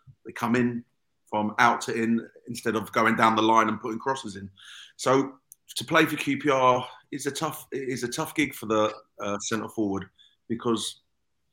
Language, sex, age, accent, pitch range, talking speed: English, male, 30-49, British, 105-120 Hz, 180 wpm